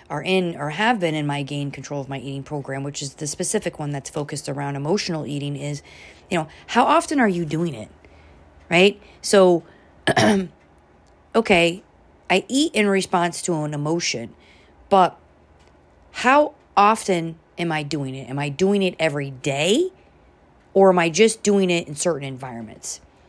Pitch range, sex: 145-195 Hz, female